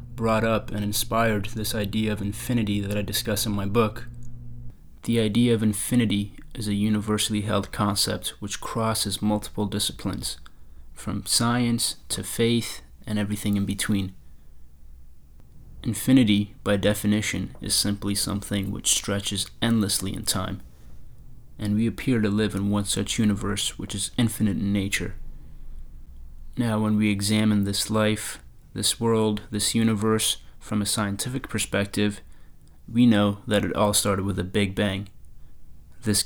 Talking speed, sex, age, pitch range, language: 140 wpm, male, 30-49, 95-110 Hz, English